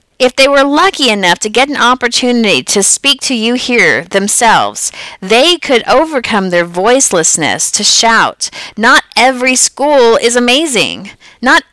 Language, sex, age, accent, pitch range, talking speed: English, female, 30-49, American, 200-265 Hz, 145 wpm